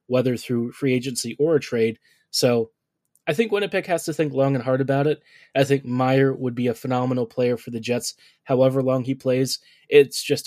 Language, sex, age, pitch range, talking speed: English, male, 20-39, 120-140 Hz, 205 wpm